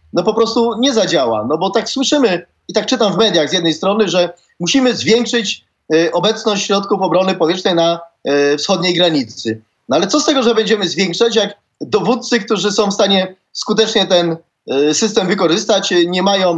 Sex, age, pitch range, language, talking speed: male, 30-49, 175-225 Hz, Polish, 170 wpm